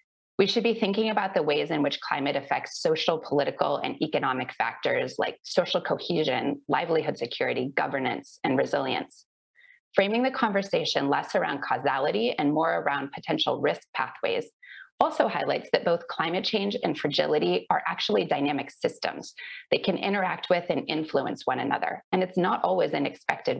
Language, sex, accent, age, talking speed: English, female, American, 30-49, 160 wpm